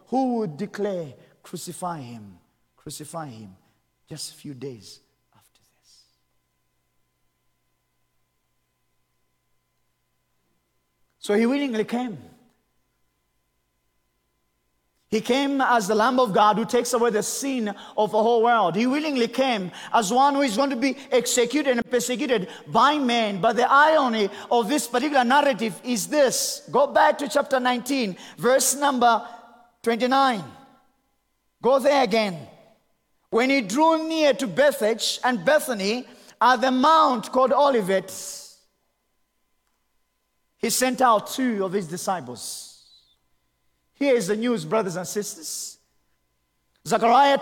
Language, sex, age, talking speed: English, male, 40-59, 120 wpm